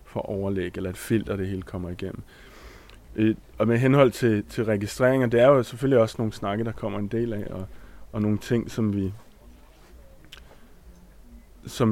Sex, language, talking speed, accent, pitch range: male, Danish, 170 wpm, native, 100-120 Hz